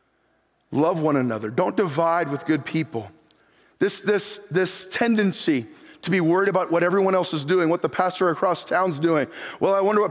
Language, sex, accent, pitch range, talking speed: English, male, American, 185-225 Hz, 185 wpm